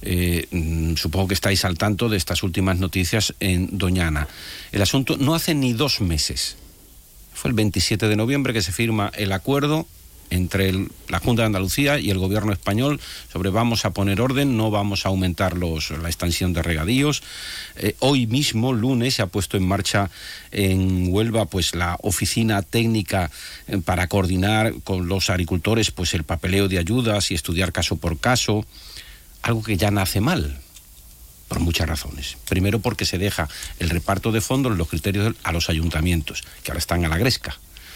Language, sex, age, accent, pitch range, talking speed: Spanish, male, 50-69, Spanish, 85-110 Hz, 170 wpm